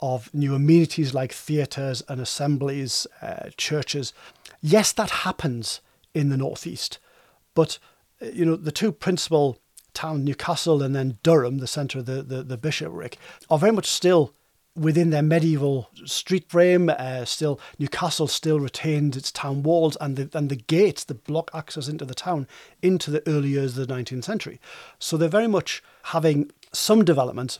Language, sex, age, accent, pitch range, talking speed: English, male, 40-59, British, 140-170 Hz, 165 wpm